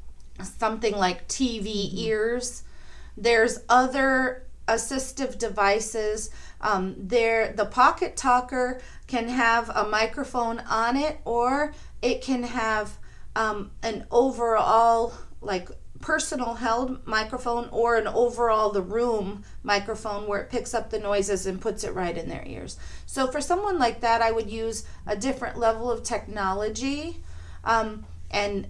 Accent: American